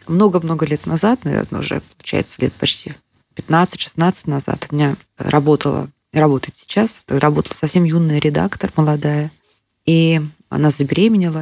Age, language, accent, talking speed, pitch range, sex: 20-39, Russian, native, 125 wpm, 150-180 Hz, female